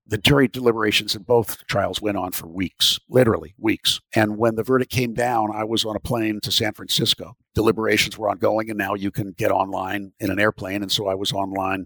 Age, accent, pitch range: 50-69, American, 95-120 Hz